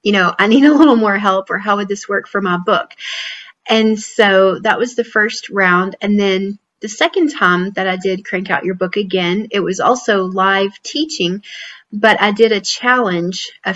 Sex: female